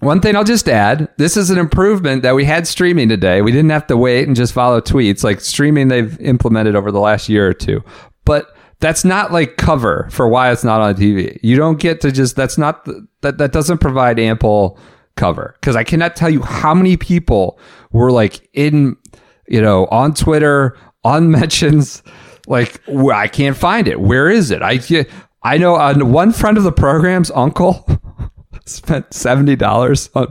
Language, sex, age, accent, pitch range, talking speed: English, male, 40-59, American, 115-160 Hz, 190 wpm